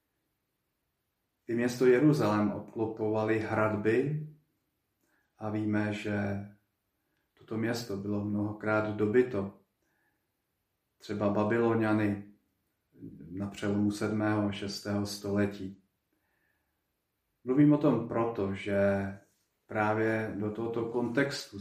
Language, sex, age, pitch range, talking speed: Slovak, male, 40-59, 105-115 Hz, 85 wpm